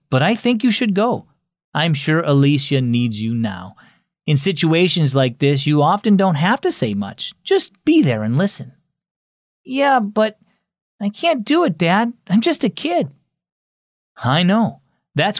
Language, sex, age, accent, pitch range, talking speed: English, male, 40-59, American, 130-200 Hz, 165 wpm